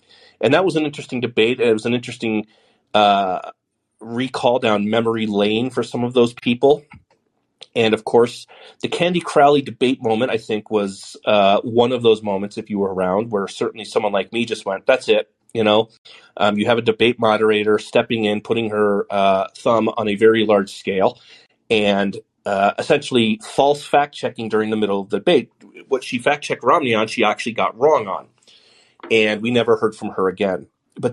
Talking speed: 190 wpm